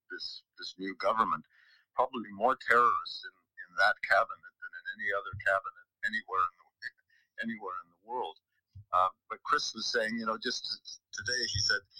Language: English